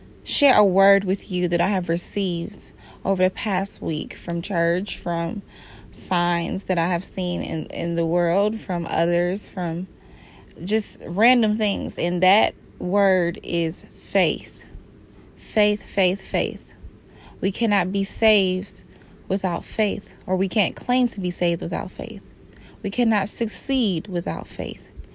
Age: 20-39